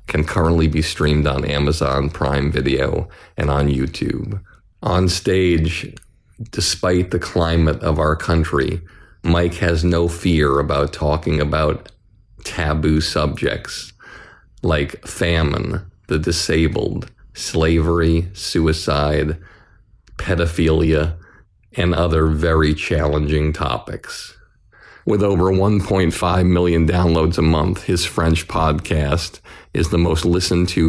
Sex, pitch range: male, 80-90 Hz